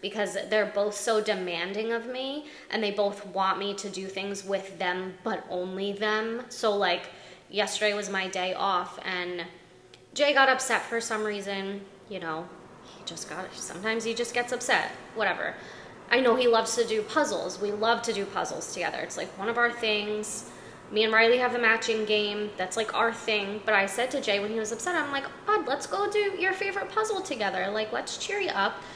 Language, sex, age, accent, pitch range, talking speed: English, female, 20-39, American, 205-280 Hz, 205 wpm